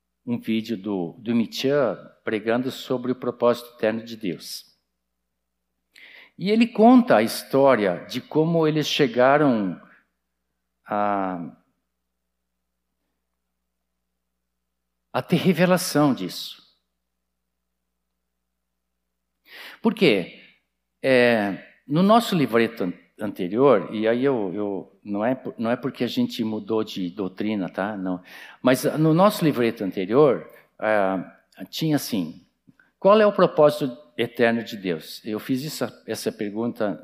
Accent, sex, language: Brazilian, male, Portuguese